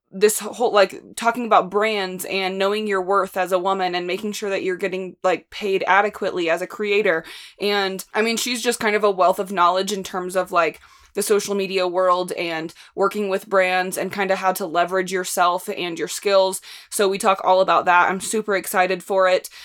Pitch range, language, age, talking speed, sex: 185-215 Hz, English, 20-39, 210 wpm, female